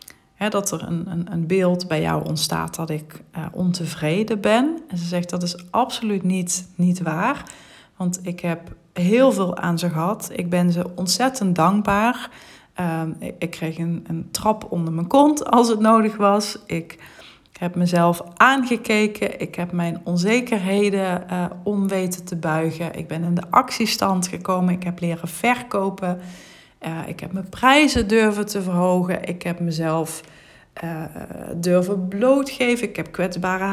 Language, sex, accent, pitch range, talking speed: Dutch, female, Dutch, 170-210 Hz, 160 wpm